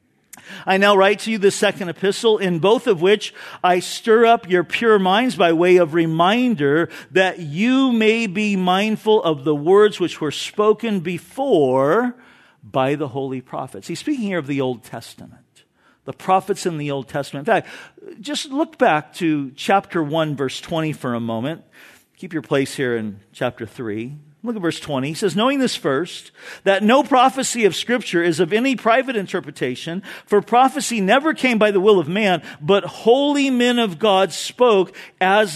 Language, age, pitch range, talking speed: English, 50-69, 165-235 Hz, 180 wpm